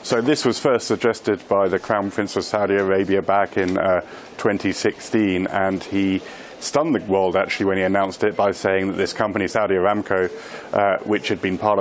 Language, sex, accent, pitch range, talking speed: English, male, British, 95-115 Hz, 195 wpm